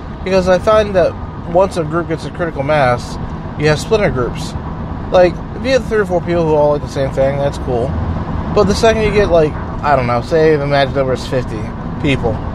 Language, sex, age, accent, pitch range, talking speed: English, male, 20-39, American, 120-175 Hz, 220 wpm